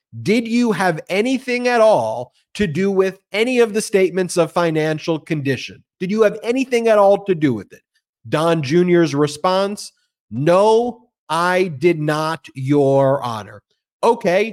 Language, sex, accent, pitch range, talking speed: English, male, American, 155-215 Hz, 150 wpm